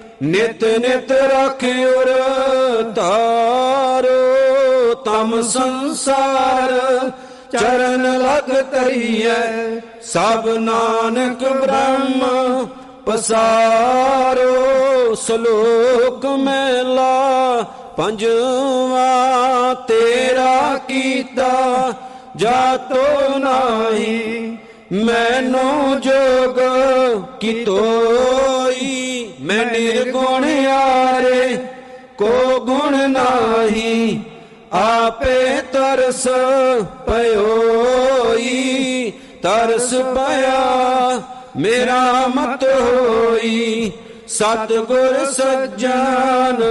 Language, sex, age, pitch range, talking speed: Punjabi, male, 50-69, 230-260 Hz, 55 wpm